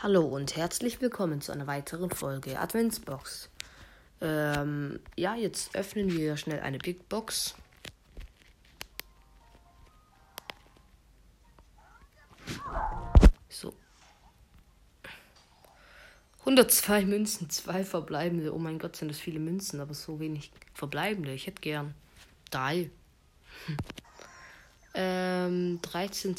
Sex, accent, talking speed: female, German, 90 wpm